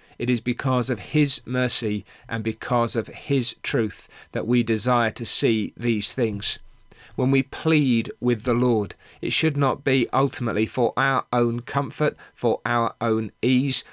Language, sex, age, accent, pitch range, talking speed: English, male, 40-59, British, 105-125 Hz, 160 wpm